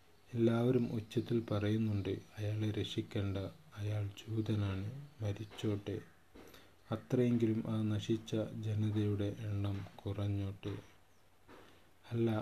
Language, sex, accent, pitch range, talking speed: Malayalam, male, native, 95-110 Hz, 70 wpm